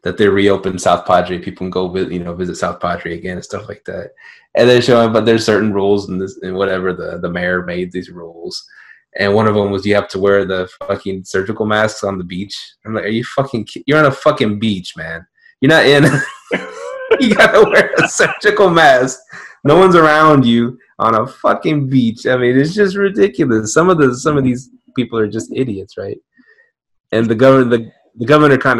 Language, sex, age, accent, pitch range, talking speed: English, male, 20-39, American, 100-125 Hz, 220 wpm